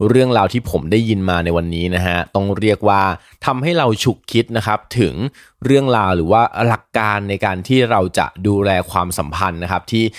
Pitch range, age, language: 95-115 Hz, 20-39, Thai